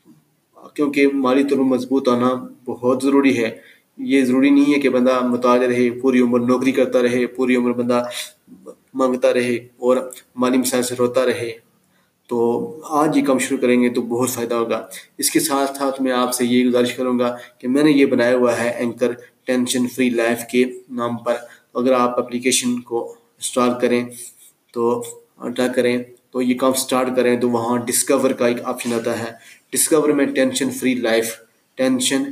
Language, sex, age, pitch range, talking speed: Urdu, male, 20-39, 120-130 Hz, 175 wpm